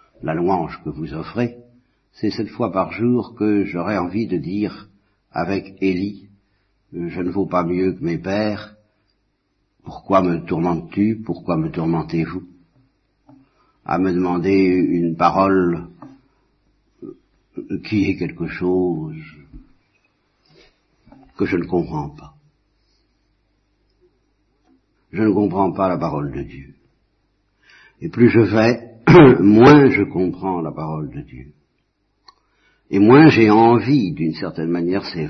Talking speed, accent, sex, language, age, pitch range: 120 wpm, French, male, French, 60-79, 90-110 Hz